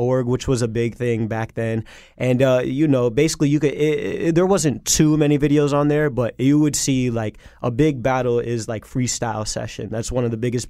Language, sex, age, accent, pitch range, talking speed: English, male, 20-39, American, 110-135 Hz, 215 wpm